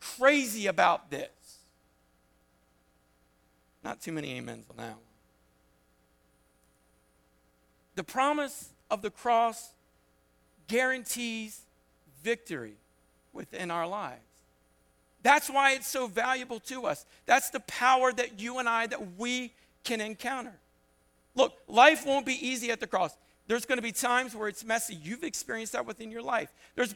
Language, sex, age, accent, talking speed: English, male, 50-69, American, 135 wpm